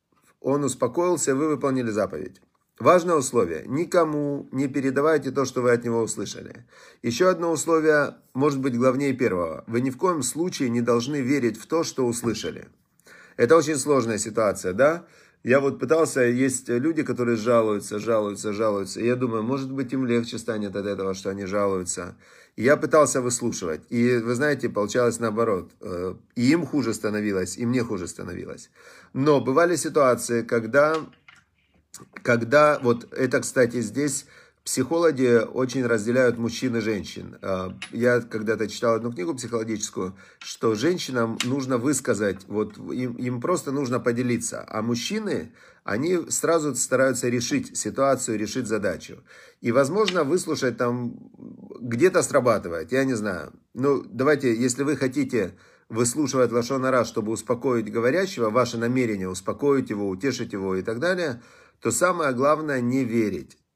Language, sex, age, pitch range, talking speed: Russian, male, 40-59, 115-140 Hz, 140 wpm